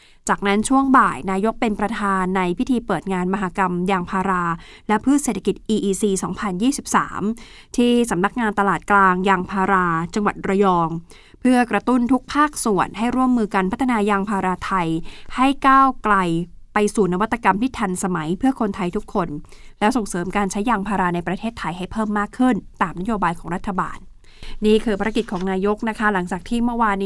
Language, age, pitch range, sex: Thai, 20-39, 190-245 Hz, female